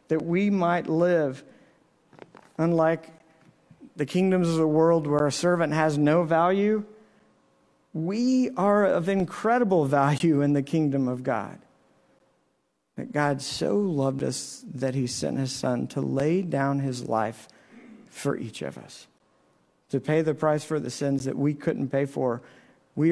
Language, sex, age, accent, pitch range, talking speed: English, male, 50-69, American, 140-175 Hz, 150 wpm